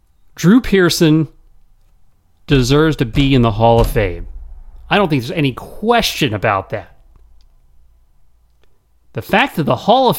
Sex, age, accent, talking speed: male, 40-59, American, 140 wpm